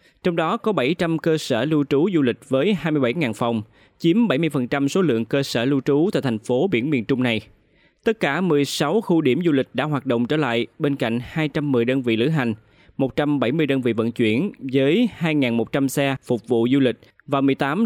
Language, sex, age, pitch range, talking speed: Vietnamese, male, 20-39, 125-160 Hz, 205 wpm